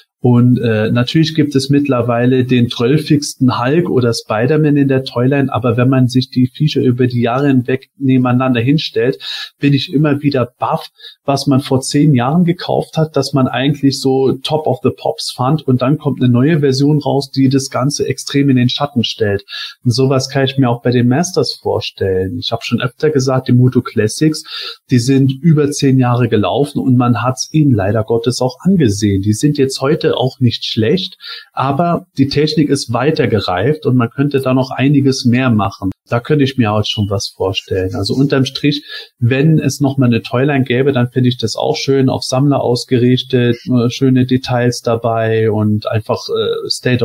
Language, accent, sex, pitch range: German, German, male, 120-145 Hz